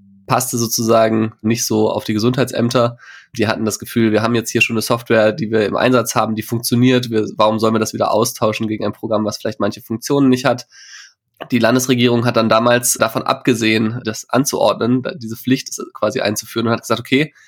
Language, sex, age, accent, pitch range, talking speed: German, male, 20-39, German, 110-125 Hz, 195 wpm